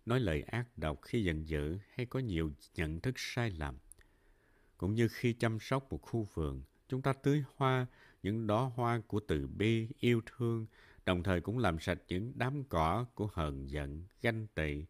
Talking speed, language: 190 wpm, Vietnamese